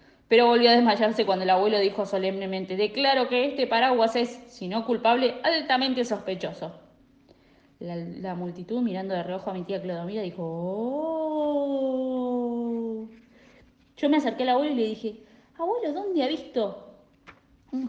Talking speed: 150 wpm